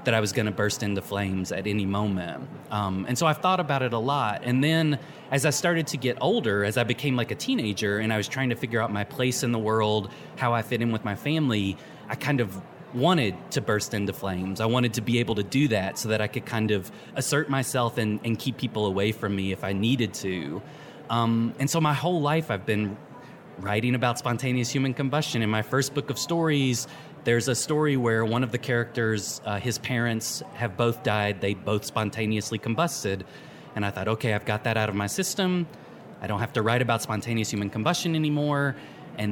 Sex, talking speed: male, 225 wpm